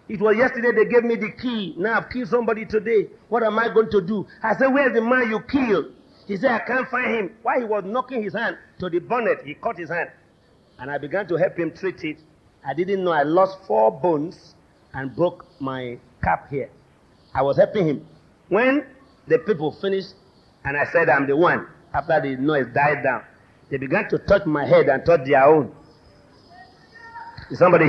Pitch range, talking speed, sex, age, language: 150-240 Hz, 205 wpm, male, 50-69, English